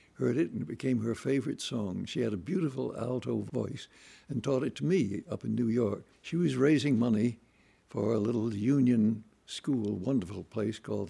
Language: English